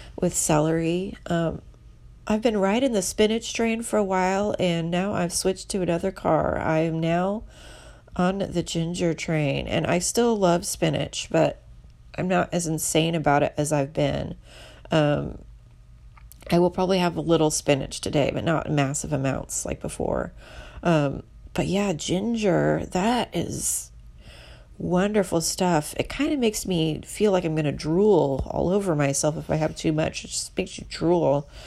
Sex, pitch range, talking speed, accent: female, 140-195 Hz, 165 wpm, American